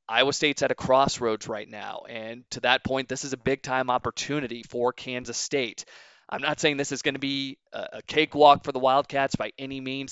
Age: 20-39